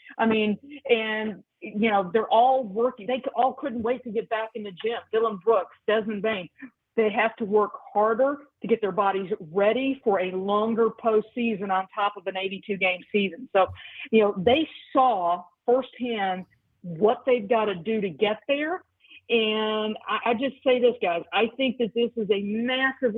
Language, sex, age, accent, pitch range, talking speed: English, female, 50-69, American, 200-245 Hz, 180 wpm